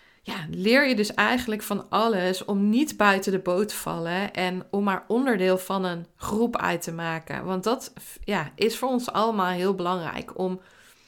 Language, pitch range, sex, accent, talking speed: Dutch, 180-225 Hz, female, Dutch, 180 wpm